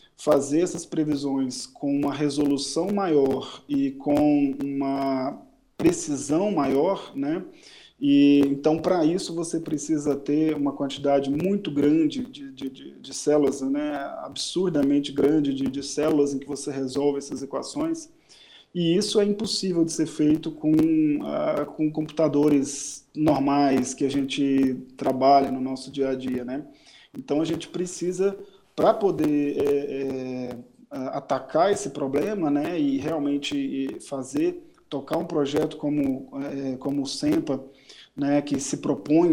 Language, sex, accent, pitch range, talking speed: Portuguese, male, Brazilian, 140-180 Hz, 130 wpm